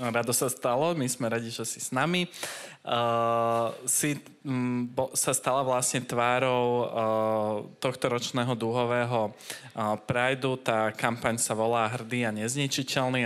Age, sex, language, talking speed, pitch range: 20-39, male, Slovak, 140 wpm, 110-125 Hz